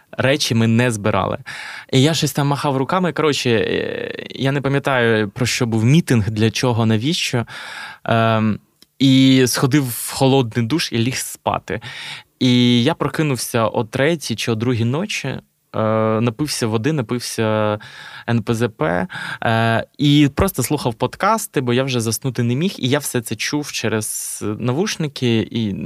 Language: Ukrainian